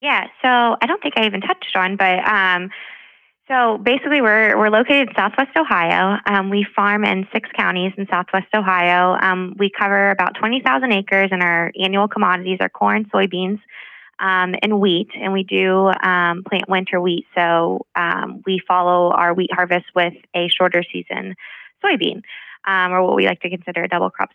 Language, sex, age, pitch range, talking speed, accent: English, female, 20-39, 180-205 Hz, 180 wpm, American